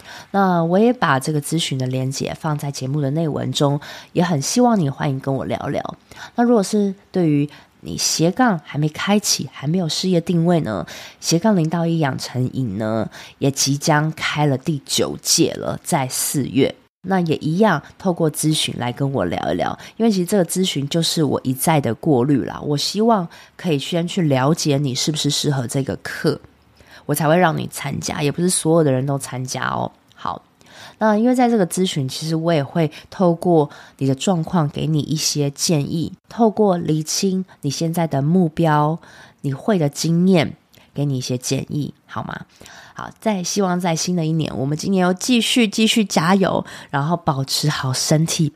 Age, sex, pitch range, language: 20-39, female, 140-180 Hz, Chinese